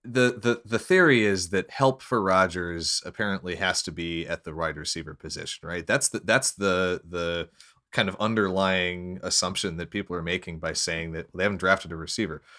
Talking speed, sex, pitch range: 190 wpm, male, 85-110 Hz